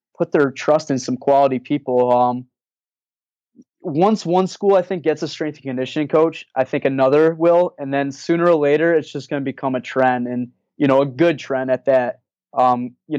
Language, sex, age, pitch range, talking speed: English, male, 20-39, 130-165 Hz, 205 wpm